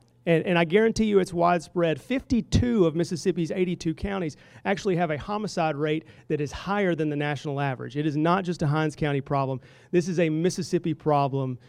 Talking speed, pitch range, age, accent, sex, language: 190 wpm, 145-175 Hz, 40-59, American, male, English